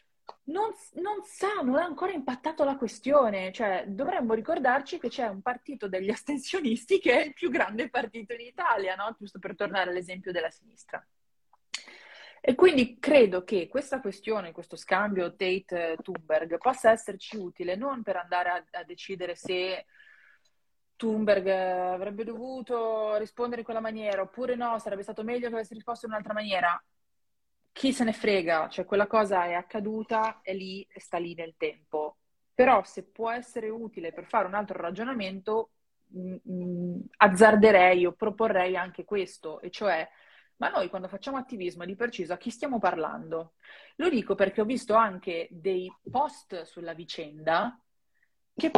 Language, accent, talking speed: Italian, native, 155 wpm